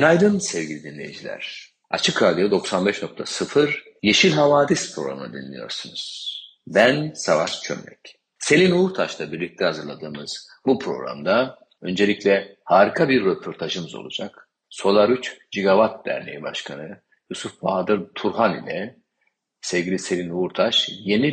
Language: Turkish